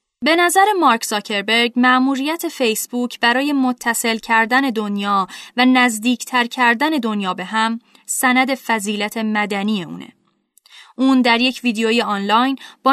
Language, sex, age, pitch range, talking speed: Persian, female, 10-29, 220-265 Hz, 120 wpm